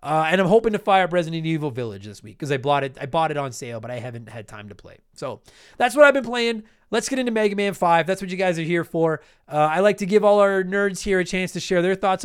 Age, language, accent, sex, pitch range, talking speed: 30-49, English, American, male, 160-210 Hz, 305 wpm